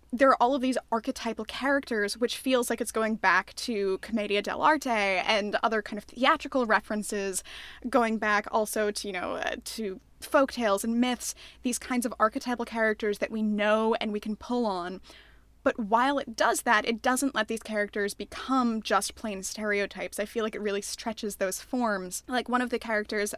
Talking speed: 185 wpm